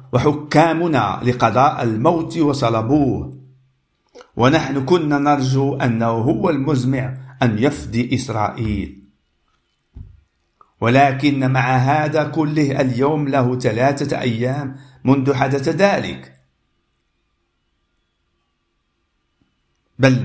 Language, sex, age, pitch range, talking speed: Arabic, male, 50-69, 110-145 Hz, 75 wpm